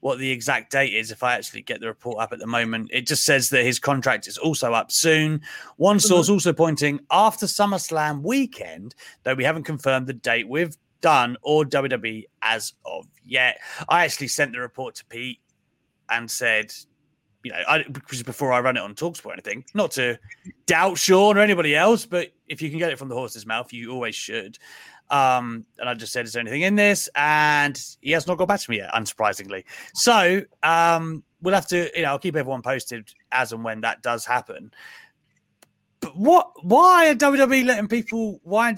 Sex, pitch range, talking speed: male, 125-180 Hz, 205 wpm